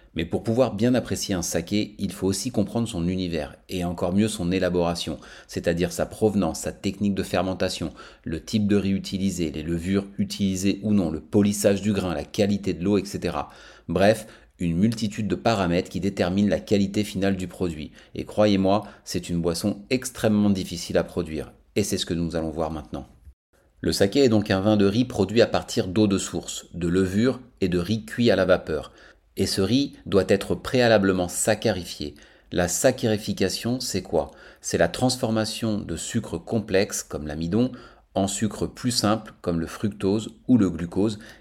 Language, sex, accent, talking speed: French, male, French, 180 wpm